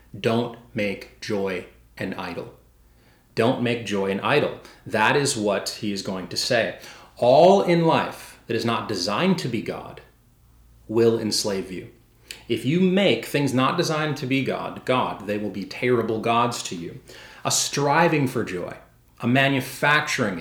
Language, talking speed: English, 160 wpm